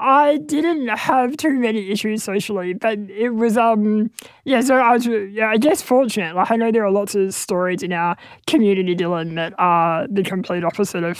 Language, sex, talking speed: English, male, 200 wpm